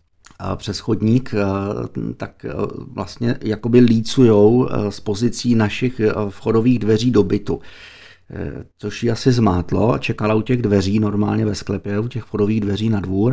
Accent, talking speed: native, 140 wpm